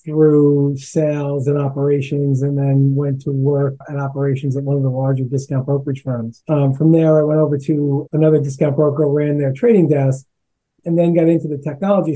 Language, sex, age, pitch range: English, male, 30-49, 135-155 Hz